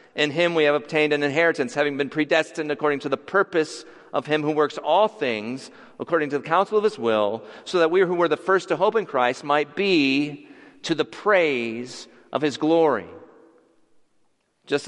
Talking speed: 190 wpm